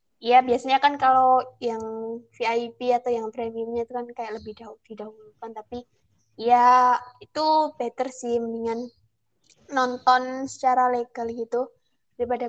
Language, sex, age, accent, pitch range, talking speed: Indonesian, female, 20-39, native, 235-260 Hz, 125 wpm